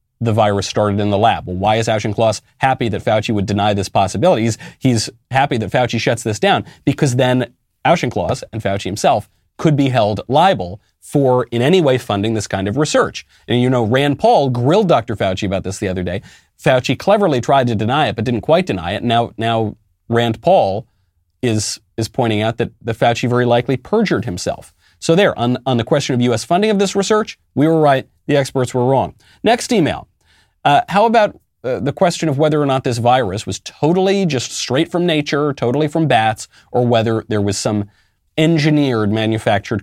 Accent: American